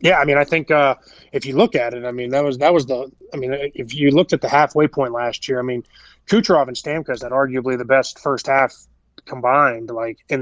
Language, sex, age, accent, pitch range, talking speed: English, male, 20-39, American, 130-145 Hz, 250 wpm